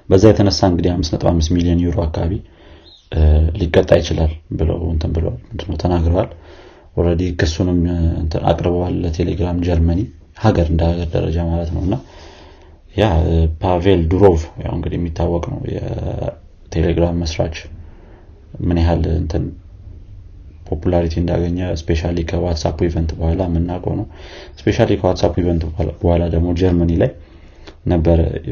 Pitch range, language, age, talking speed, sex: 80-90 Hz, Amharic, 30-49, 100 wpm, male